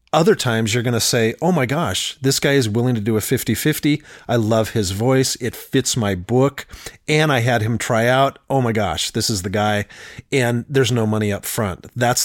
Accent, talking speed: American, 220 wpm